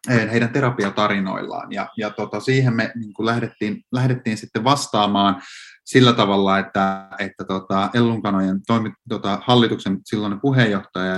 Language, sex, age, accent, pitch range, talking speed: Finnish, male, 30-49, native, 100-125 Hz, 125 wpm